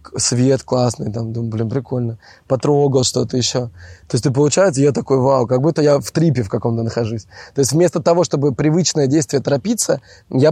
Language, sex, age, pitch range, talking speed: Russian, male, 20-39, 115-155 Hz, 185 wpm